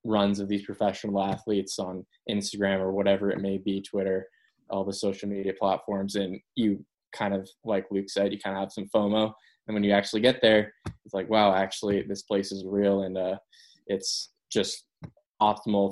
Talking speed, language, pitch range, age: 190 wpm, English, 100-110 Hz, 10-29